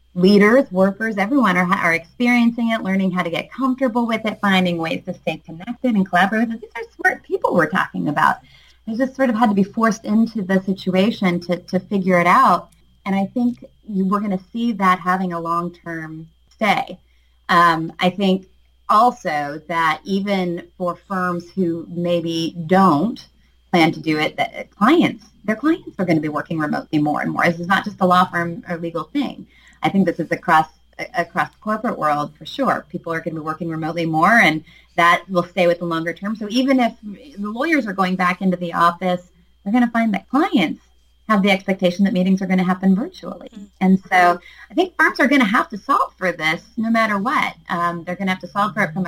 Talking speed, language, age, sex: 215 wpm, English, 30-49, female